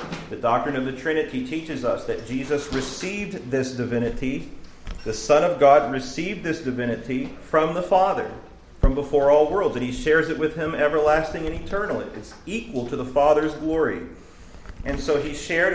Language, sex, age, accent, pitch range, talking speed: English, male, 40-59, American, 135-175 Hz, 170 wpm